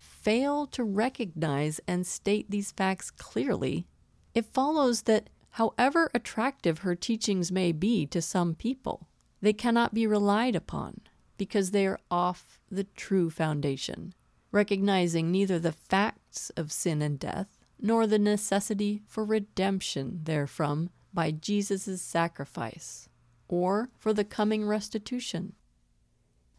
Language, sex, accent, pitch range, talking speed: English, female, American, 165-215 Hz, 120 wpm